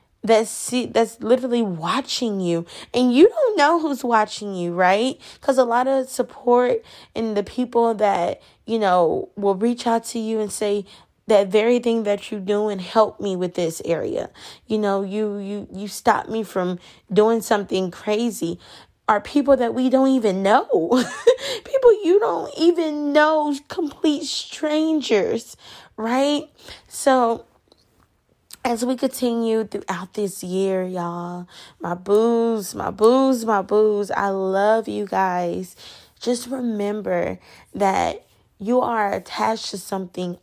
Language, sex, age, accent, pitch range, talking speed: English, female, 10-29, American, 195-245 Hz, 140 wpm